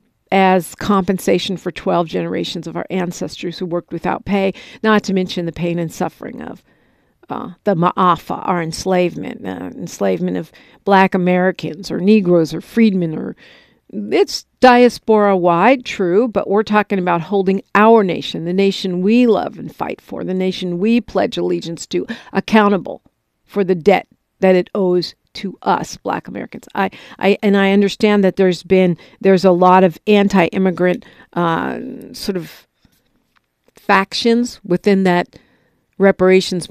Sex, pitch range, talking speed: female, 175-205 Hz, 145 wpm